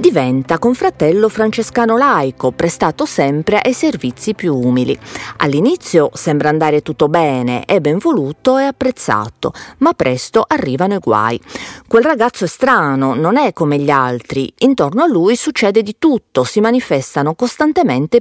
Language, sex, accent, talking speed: Italian, female, native, 140 wpm